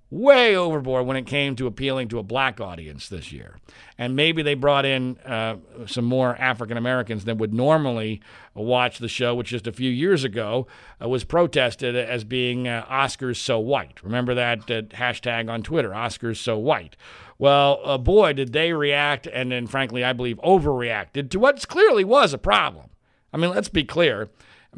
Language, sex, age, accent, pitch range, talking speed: English, male, 50-69, American, 120-145 Hz, 185 wpm